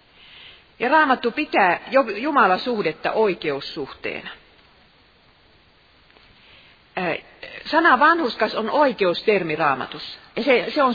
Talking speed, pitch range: 65 wpm, 185-255 Hz